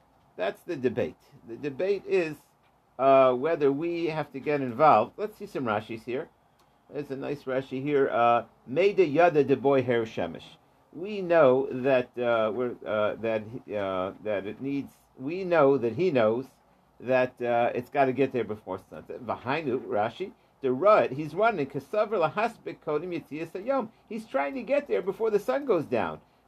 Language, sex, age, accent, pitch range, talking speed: English, male, 50-69, American, 140-225 Hz, 155 wpm